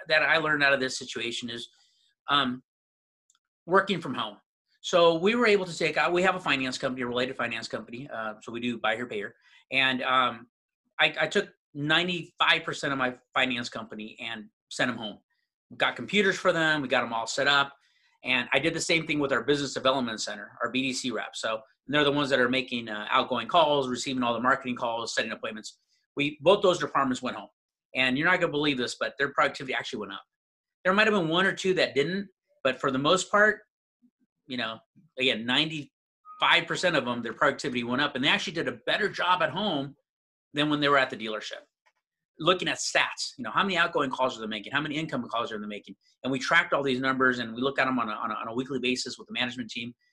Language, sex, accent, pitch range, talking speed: English, male, American, 120-165 Hz, 225 wpm